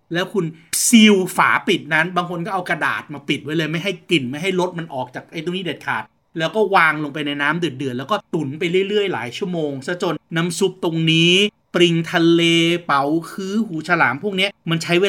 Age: 30-49